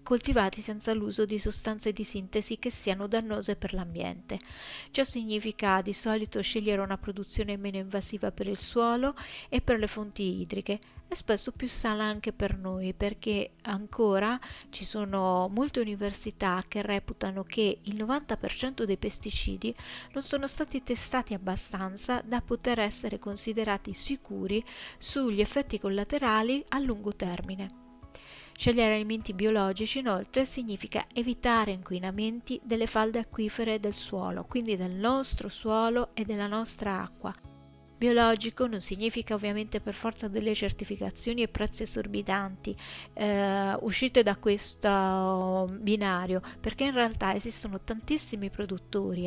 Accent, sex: native, female